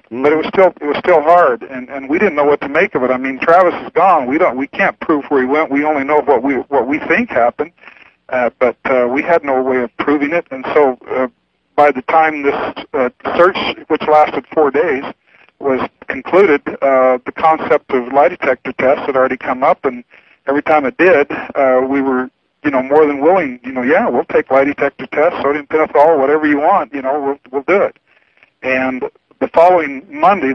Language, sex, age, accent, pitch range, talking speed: English, male, 50-69, American, 130-155 Hz, 220 wpm